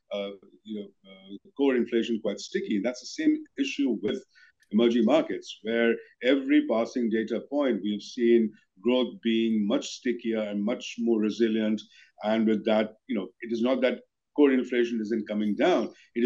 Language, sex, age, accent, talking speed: English, male, 50-69, Indian, 170 wpm